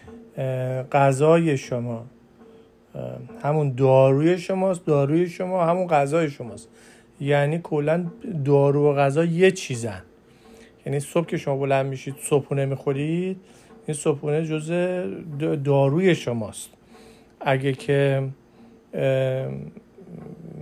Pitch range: 135-160 Hz